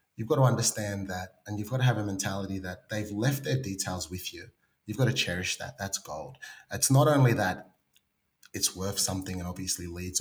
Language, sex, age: English, male, 30-49